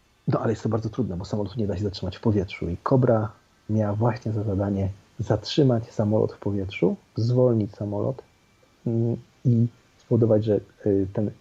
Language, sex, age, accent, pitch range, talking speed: Polish, male, 40-59, native, 100-115 Hz, 160 wpm